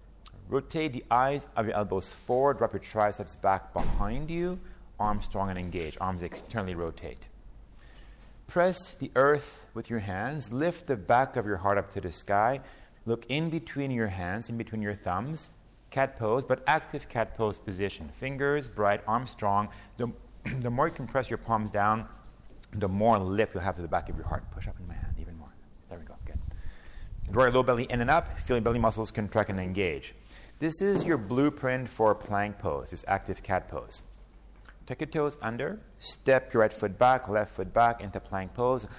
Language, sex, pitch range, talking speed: Hebrew, male, 100-130 Hz, 200 wpm